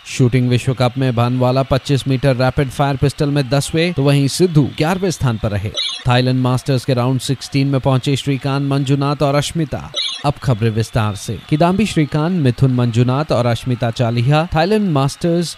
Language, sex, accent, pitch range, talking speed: Hindi, male, native, 120-150 Hz, 175 wpm